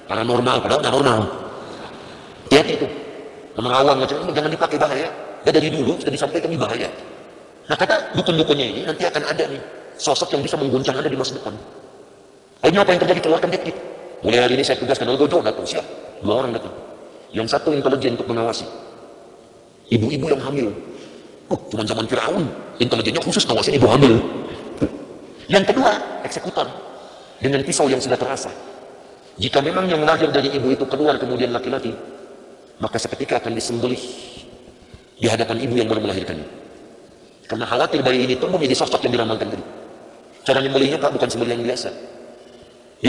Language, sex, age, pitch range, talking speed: Indonesian, male, 50-69, 120-145 Hz, 150 wpm